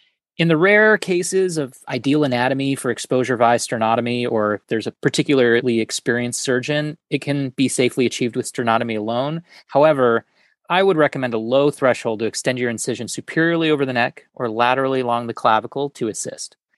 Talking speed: 170 wpm